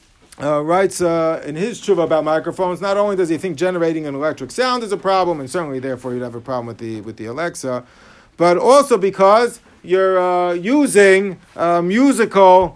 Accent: American